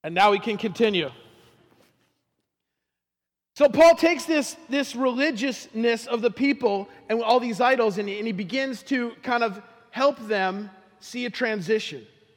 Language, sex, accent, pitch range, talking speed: English, male, American, 215-270 Hz, 140 wpm